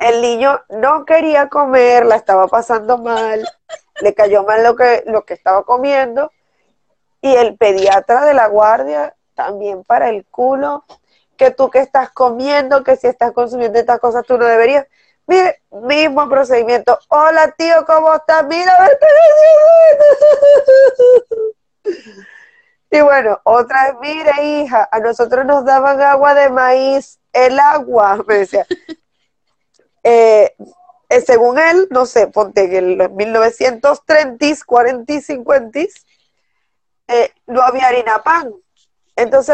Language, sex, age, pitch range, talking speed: Spanish, female, 20-39, 230-300 Hz, 135 wpm